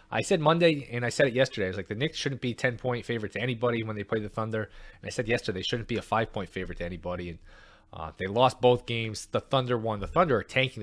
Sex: male